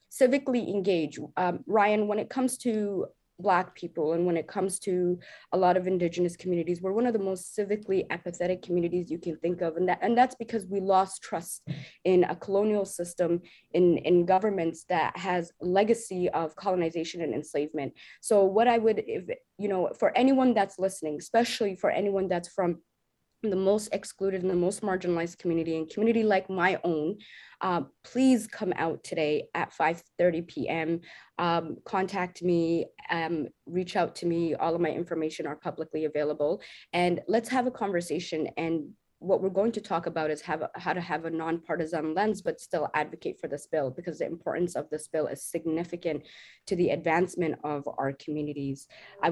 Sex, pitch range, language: female, 160-195 Hz, English